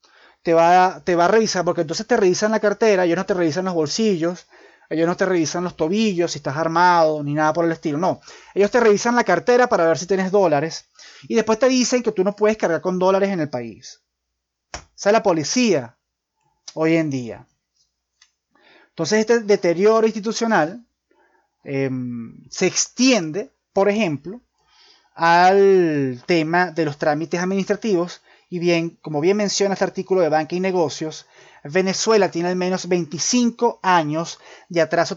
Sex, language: male, Spanish